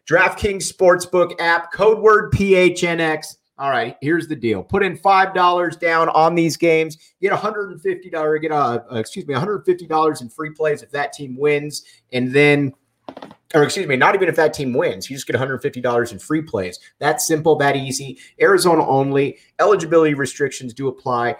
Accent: American